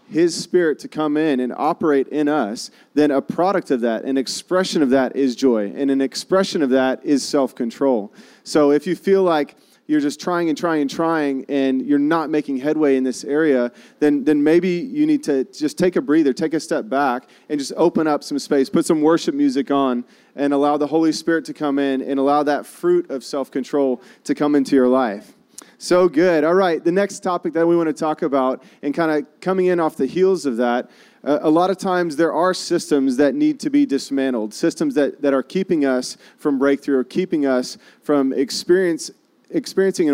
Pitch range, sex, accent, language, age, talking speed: 135-175 Hz, male, American, English, 30-49, 210 wpm